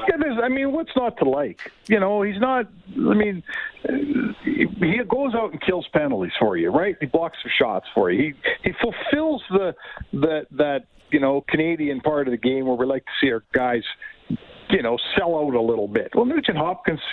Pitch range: 140-205 Hz